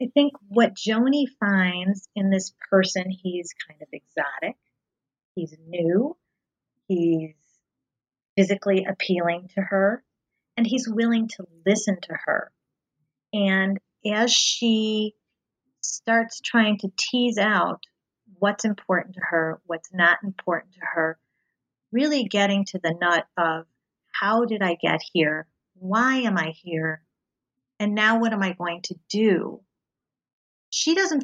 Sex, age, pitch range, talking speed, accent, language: female, 40-59, 175-215 Hz, 130 wpm, American, English